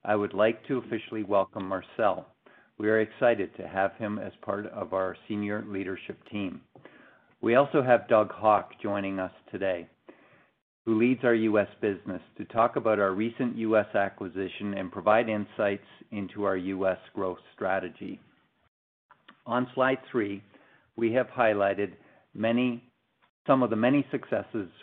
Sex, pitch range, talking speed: male, 100-110 Hz, 145 wpm